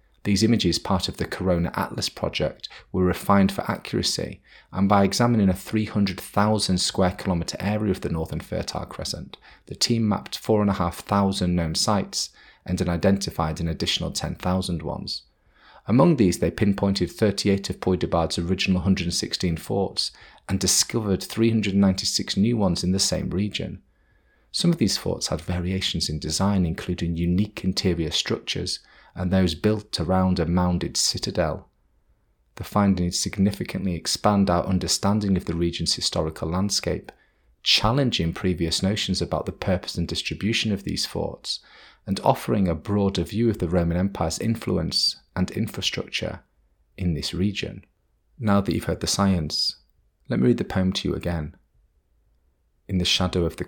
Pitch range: 85-100 Hz